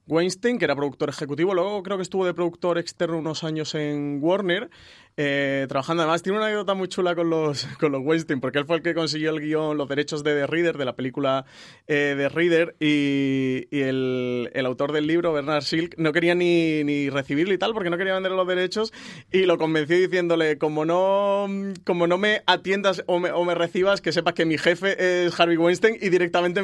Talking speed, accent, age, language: 215 wpm, Spanish, 30-49, Spanish